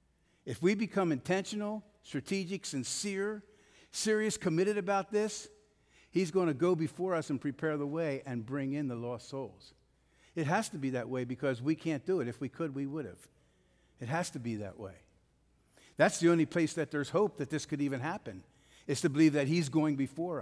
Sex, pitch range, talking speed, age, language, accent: male, 125-180 Hz, 200 wpm, 50-69, English, American